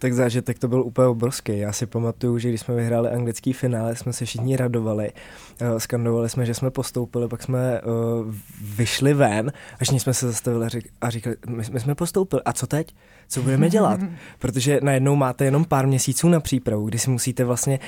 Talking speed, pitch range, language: 185 wpm, 115-130 Hz, Czech